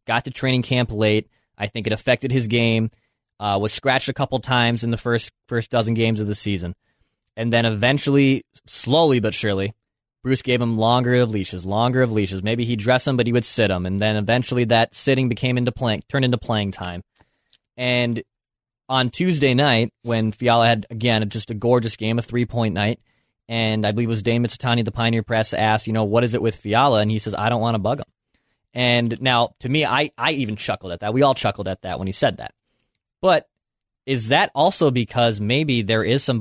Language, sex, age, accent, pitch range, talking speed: English, male, 20-39, American, 110-130 Hz, 220 wpm